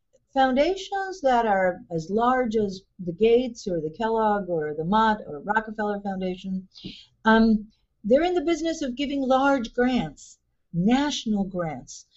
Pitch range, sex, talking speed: 175-245 Hz, female, 140 wpm